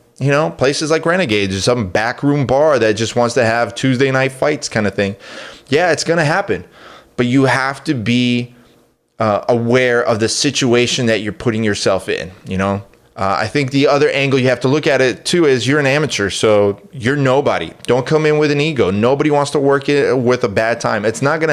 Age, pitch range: 20-39, 115-155 Hz